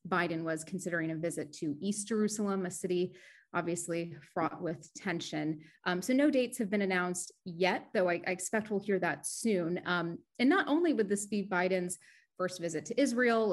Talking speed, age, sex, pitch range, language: 185 wpm, 30-49, female, 170-205 Hz, English